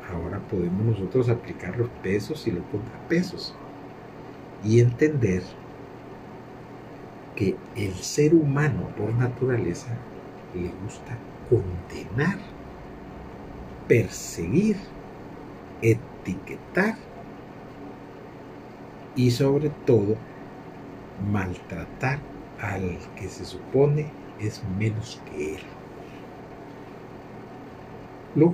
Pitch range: 95-135 Hz